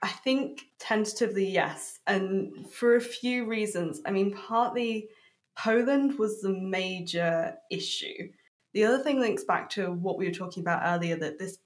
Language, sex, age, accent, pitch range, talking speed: English, female, 20-39, British, 175-210 Hz, 160 wpm